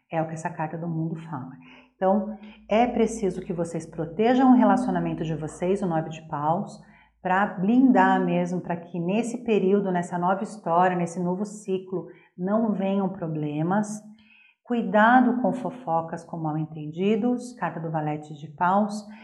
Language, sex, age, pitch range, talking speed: Portuguese, female, 40-59, 165-205 Hz, 150 wpm